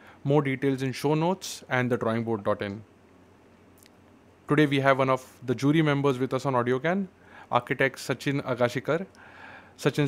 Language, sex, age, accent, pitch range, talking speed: English, male, 20-39, Indian, 115-140 Hz, 145 wpm